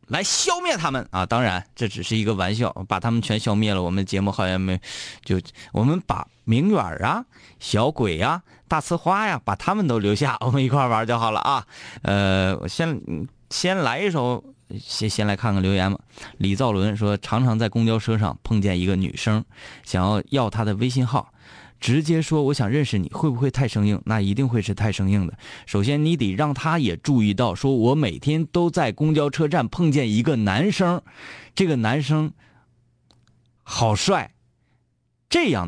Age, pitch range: 20-39, 105-150 Hz